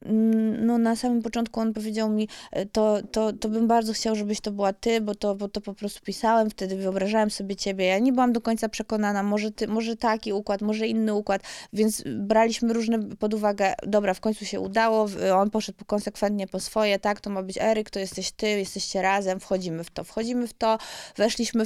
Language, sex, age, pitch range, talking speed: Polish, female, 20-39, 190-225 Hz, 195 wpm